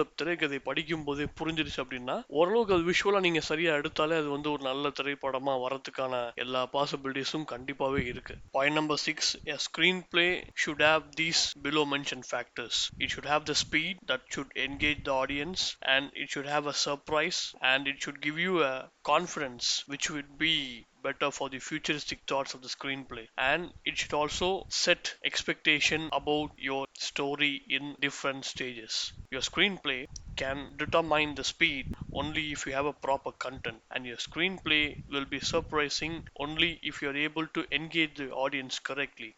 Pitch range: 135-155 Hz